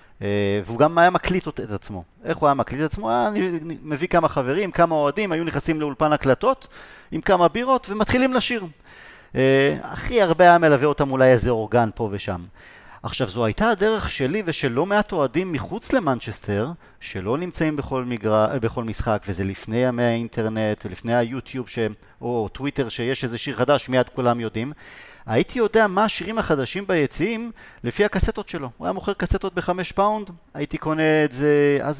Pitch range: 115-160 Hz